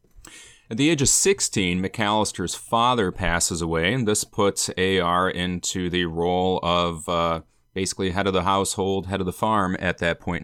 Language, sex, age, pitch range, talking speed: English, male, 30-49, 90-110 Hz, 170 wpm